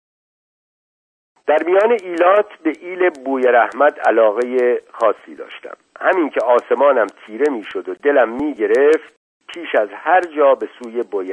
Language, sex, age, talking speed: Persian, male, 50-69, 140 wpm